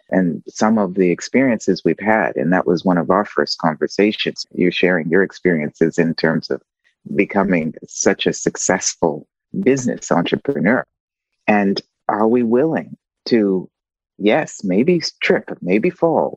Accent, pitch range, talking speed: American, 90-110 Hz, 140 wpm